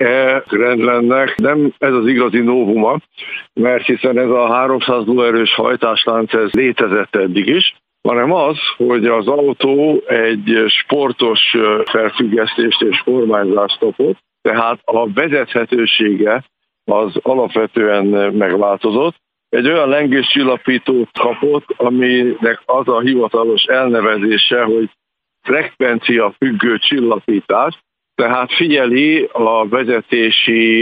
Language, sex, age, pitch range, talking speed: Hungarian, male, 60-79, 110-125 Hz, 100 wpm